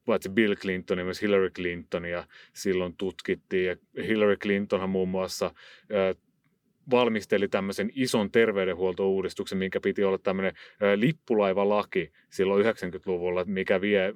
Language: Finnish